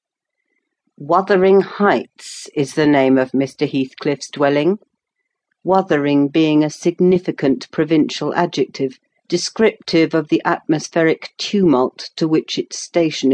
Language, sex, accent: English, female, British